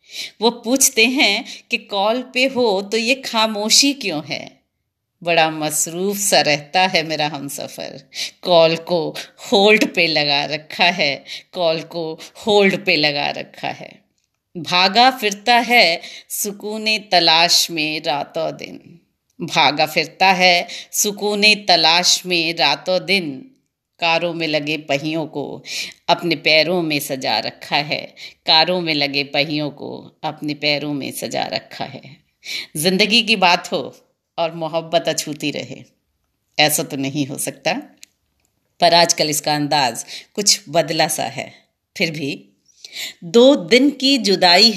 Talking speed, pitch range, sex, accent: 135 wpm, 160-215 Hz, female, native